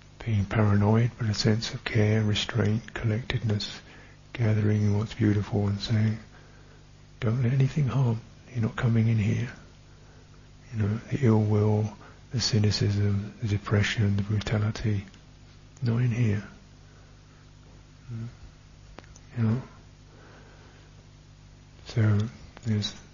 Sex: male